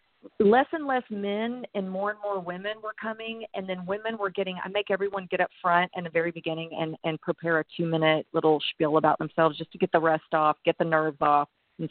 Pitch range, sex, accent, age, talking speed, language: 170-210 Hz, female, American, 40-59, 235 wpm, English